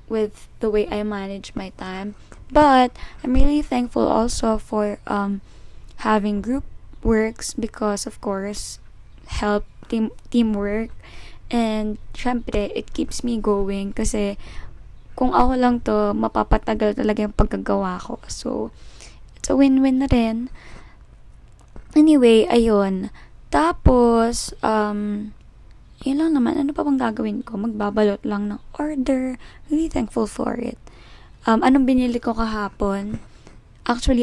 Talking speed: 120 wpm